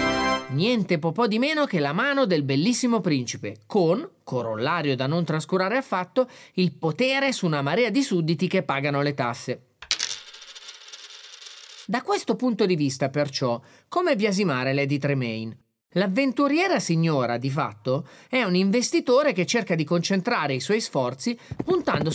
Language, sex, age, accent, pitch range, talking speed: Italian, male, 30-49, native, 140-230 Hz, 145 wpm